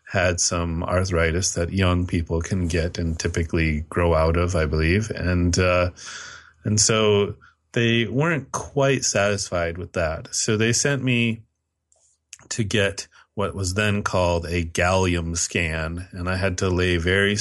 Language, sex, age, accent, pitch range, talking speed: English, male, 30-49, American, 85-105 Hz, 150 wpm